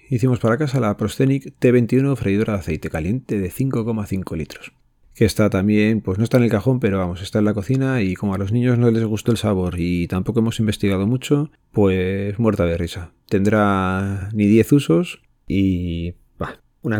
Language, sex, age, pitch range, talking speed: Spanish, male, 30-49, 95-120 Hz, 190 wpm